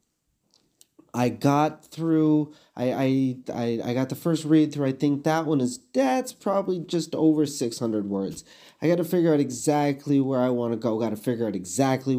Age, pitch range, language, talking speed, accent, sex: 30-49, 105-135 Hz, English, 175 wpm, American, male